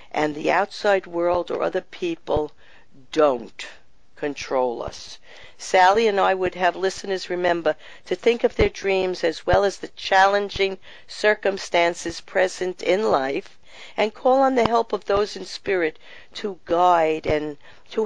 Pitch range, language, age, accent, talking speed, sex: 165-200 Hz, English, 50-69, American, 145 wpm, female